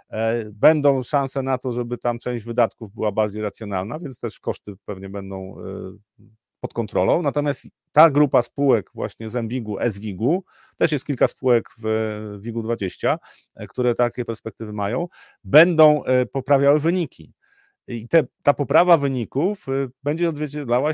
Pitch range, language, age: 115-150 Hz, Polish, 40-59